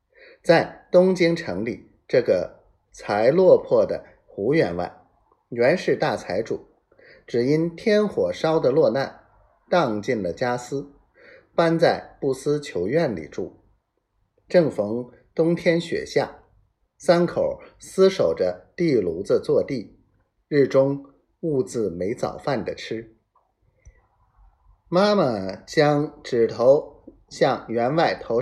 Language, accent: Chinese, native